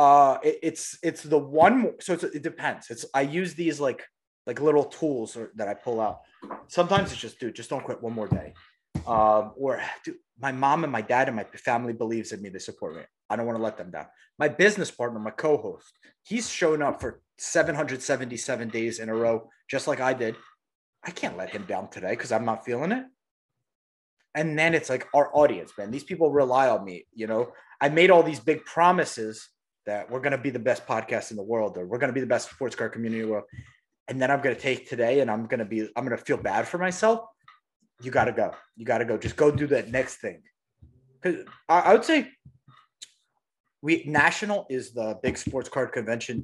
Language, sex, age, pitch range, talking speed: English, male, 30-49, 115-165 Hz, 225 wpm